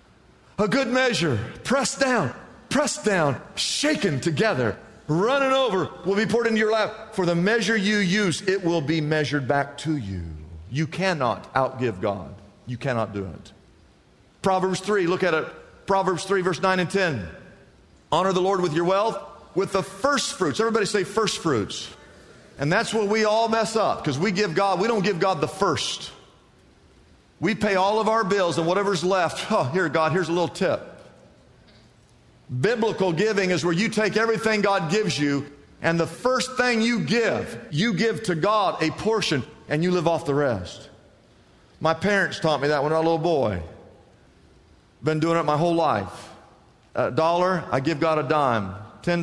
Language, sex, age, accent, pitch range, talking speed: English, male, 50-69, American, 145-200 Hz, 180 wpm